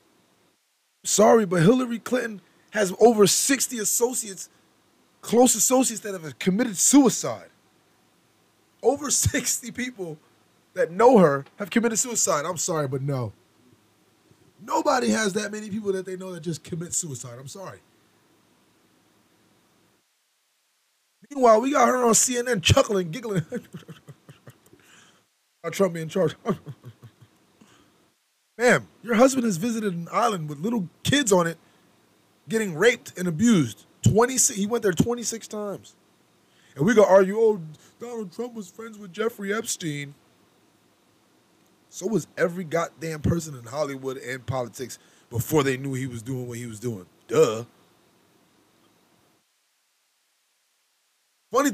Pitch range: 145-225 Hz